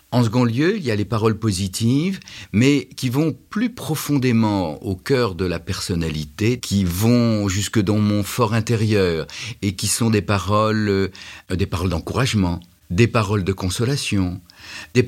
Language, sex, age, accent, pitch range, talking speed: French, male, 50-69, French, 85-120 Hz, 160 wpm